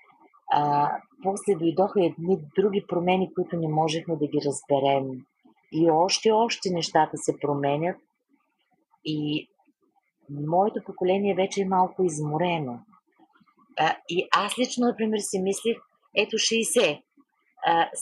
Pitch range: 145-200 Hz